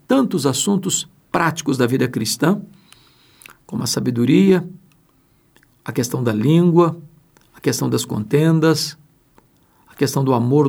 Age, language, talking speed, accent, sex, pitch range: 60-79, Portuguese, 120 wpm, Brazilian, male, 145-195 Hz